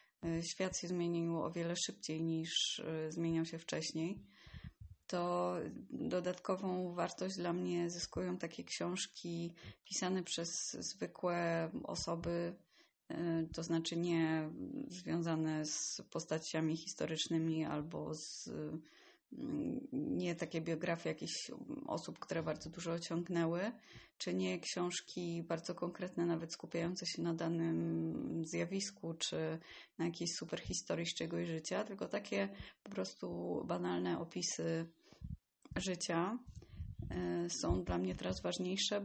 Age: 20-39